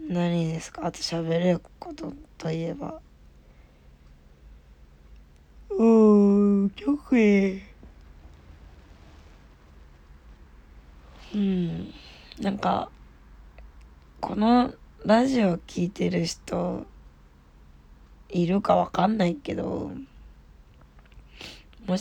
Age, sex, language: 20-39, female, Japanese